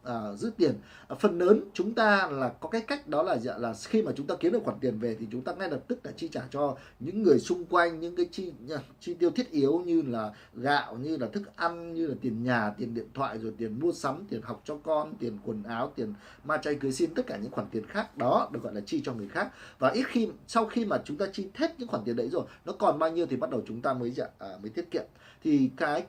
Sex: male